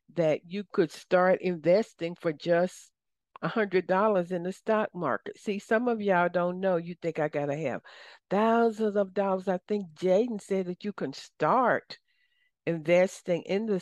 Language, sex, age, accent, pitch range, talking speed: English, female, 60-79, American, 170-205 Hz, 165 wpm